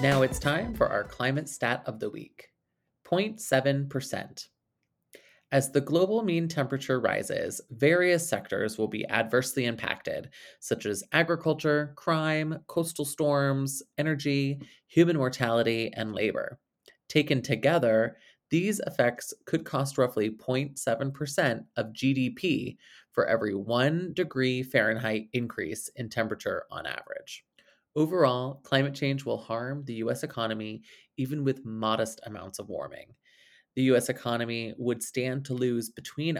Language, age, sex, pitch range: English, 20-39, male, 115-140 Hz